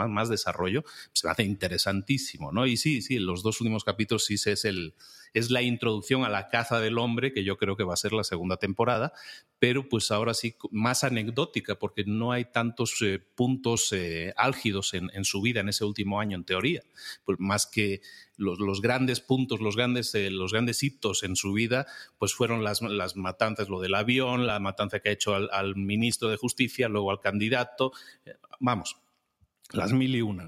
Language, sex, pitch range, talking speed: Spanish, male, 100-125 Hz, 195 wpm